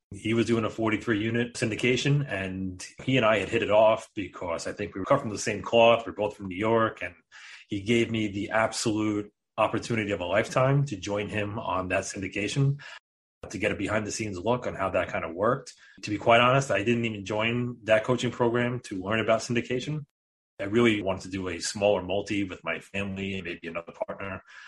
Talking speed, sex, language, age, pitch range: 210 wpm, male, English, 30-49, 100-115 Hz